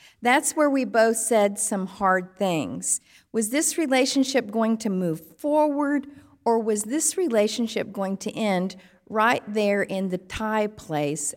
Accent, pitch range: American, 165-245 Hz